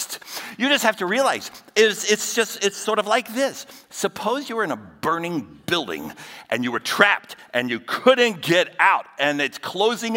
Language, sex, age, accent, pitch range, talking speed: English, male, 50-69, American, 170-245 Hz, 190 wpm